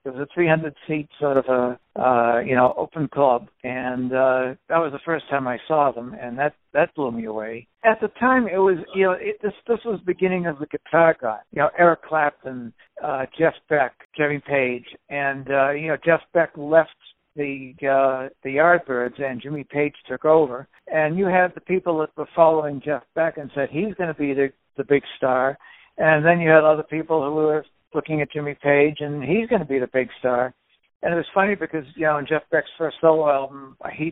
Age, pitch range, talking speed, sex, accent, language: 60-79, 140-165 Hz, 220 wpm, male, American, English